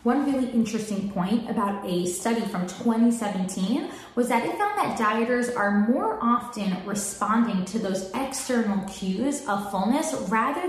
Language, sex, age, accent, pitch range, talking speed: English, female, 20-39, American, 195-245 Hz, 145 wpm